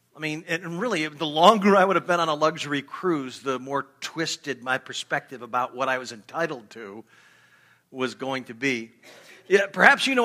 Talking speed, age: 195 wpm, 50-69